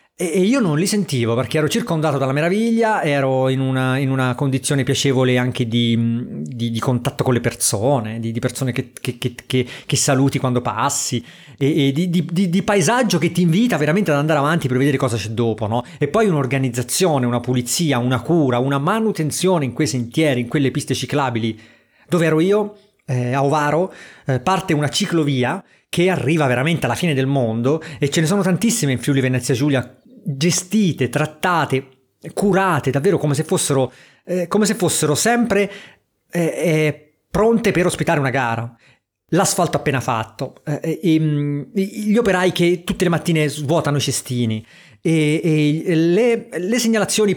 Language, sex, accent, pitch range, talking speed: Italian, male, native, 130-180 Hz, 175 wpm